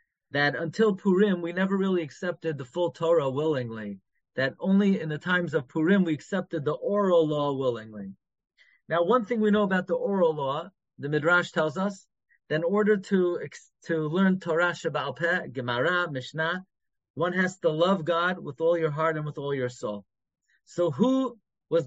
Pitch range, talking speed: 150-190 Hz, 175 wpm